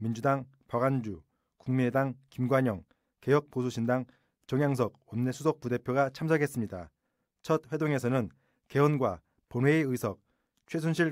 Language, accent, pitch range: Korean, native, 120-145 Hz